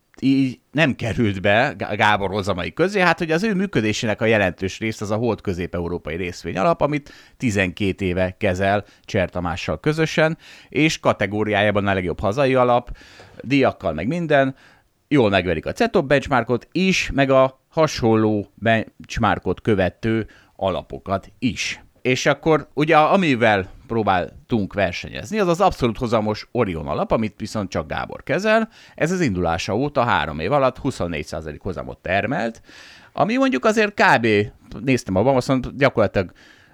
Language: Hungarian